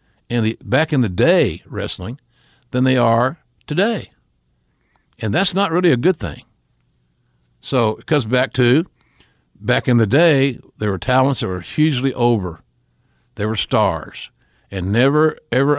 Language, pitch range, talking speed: English, 105-135 Hz, 150 wpm